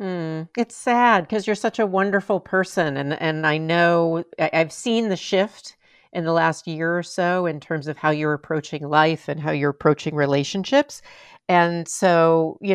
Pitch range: 150-190 Hz